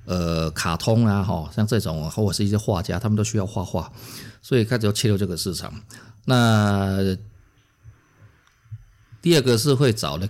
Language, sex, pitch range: Chinese, male, 95-110 Hz